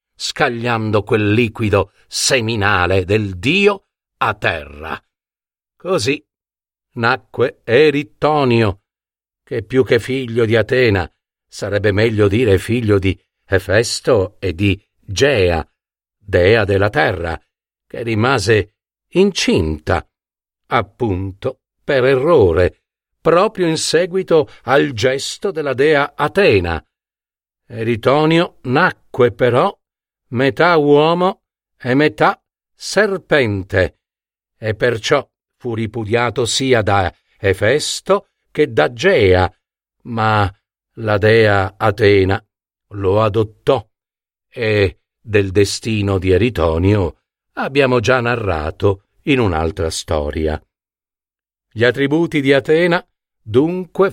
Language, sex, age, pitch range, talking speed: Italian, male, 50-69, 100-140 Hz, 90 wpm